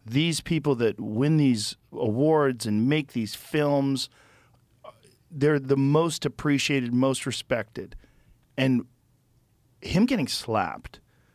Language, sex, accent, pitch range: English, male, American, 115-155 Hz